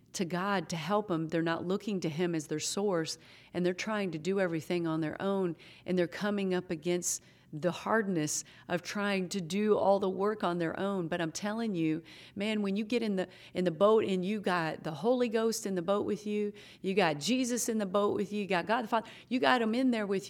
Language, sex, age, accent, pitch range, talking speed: English, female, 50-69, American, 170-210 Hz, 240 wpm